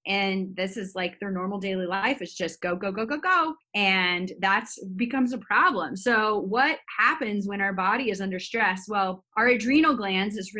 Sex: female